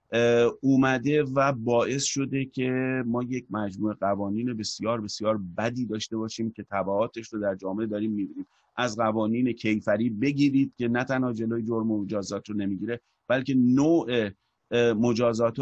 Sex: male